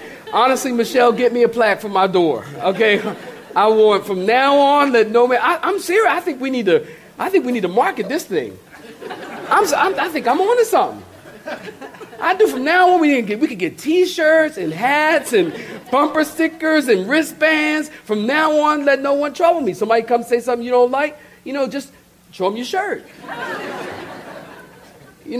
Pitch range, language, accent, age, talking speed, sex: 180-275 Hz, English, American, 40-59, 190 wpm, male